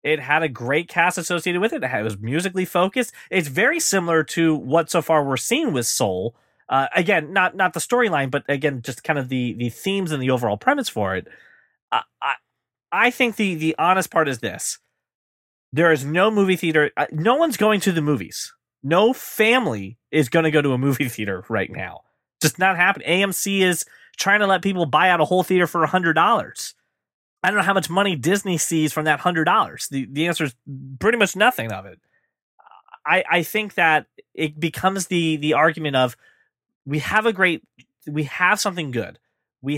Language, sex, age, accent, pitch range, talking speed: English, male, 20-39, American, 135-185 Hz, 200 wpm